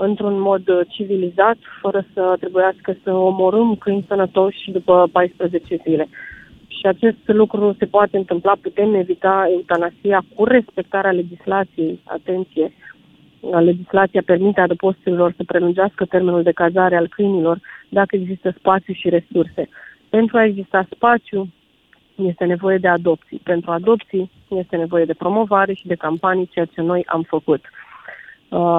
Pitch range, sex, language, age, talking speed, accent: 175-200 Hz, female, Romanian, 30-49, 135 wpm, native